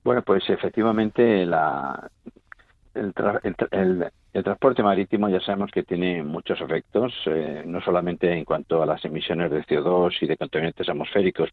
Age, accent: 50-69, Spanish